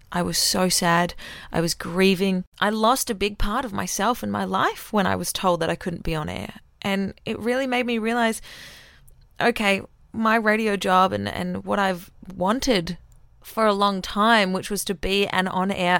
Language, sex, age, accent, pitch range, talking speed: English, female, 20-39, Australian, 180-230 Hz, 195 wpm